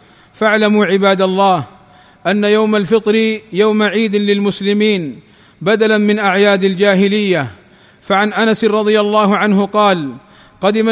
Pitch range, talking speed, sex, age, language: 195-220 Hz, 110 wpm, male, 40-59, Arabic